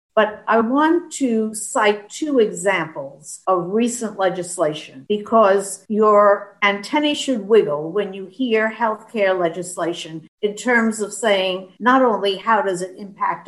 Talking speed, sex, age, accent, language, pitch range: 135 wpm, female, 60-79, American, English, 180-235 Hz